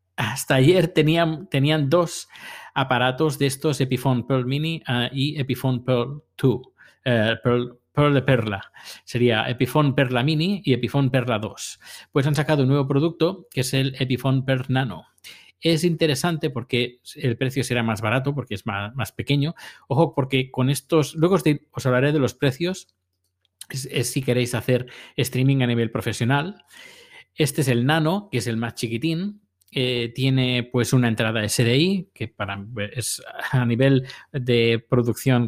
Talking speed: 160 wpm